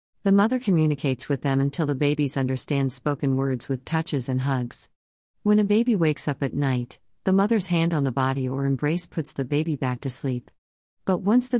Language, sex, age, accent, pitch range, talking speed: English, female, 50-69, American, 130-160 Hz, 200 wpm